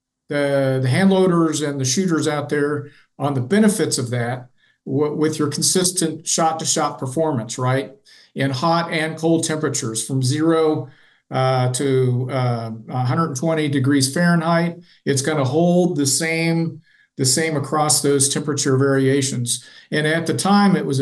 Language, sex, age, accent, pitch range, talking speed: English, male, 50-69, American, 135-165 Hz, 150 wpm